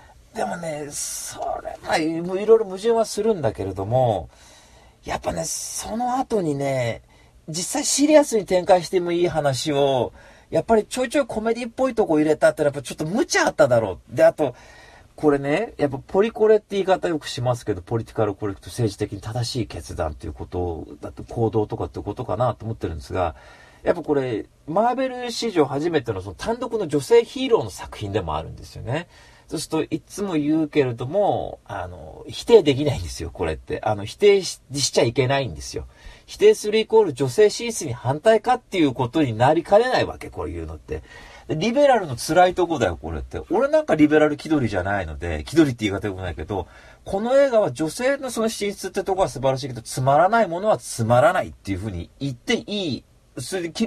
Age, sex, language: 40-59, male, Japanese